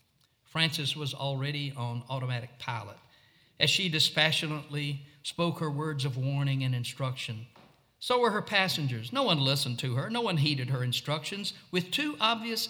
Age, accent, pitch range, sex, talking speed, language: 60-79, American, 135-185 Hz, male, 155 wpm, English